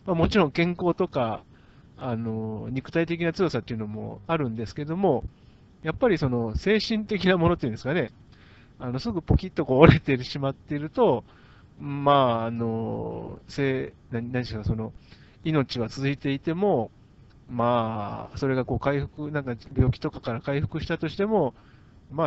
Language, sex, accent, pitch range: Japanese, male, native, 115-160 Hz